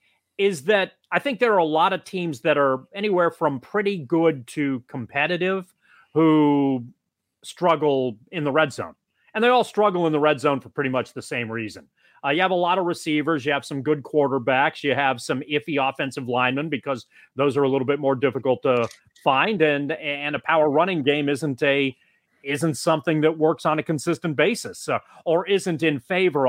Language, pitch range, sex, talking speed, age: English, 135-175 Hz, male, 195 wpm, 30-49